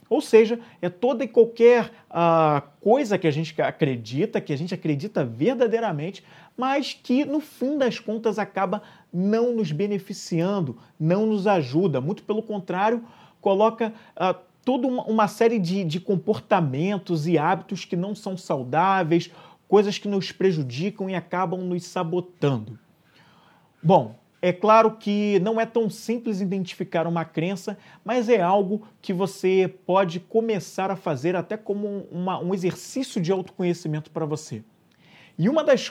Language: Portuguese